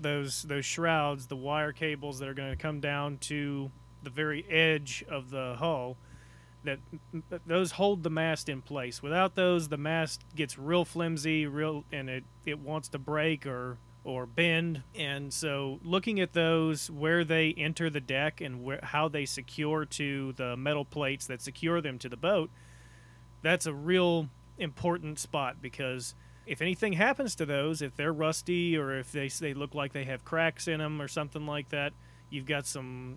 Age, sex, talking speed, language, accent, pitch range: 30-49, male, 180 wpm, English, American, 130-160 Hz